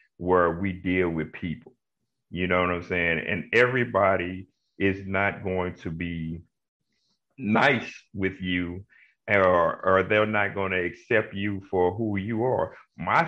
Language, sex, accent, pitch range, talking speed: English, male, American, 95-125 Hz, 150 wpm